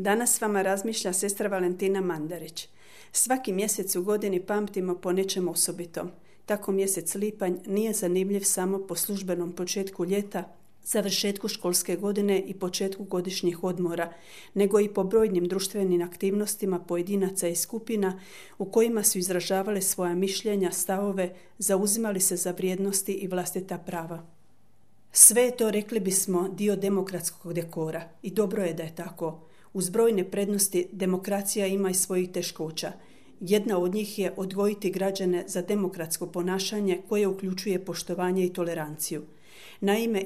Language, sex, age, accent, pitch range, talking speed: Croatian, female, 40-59, native, 175-200 Hz, 135 wpm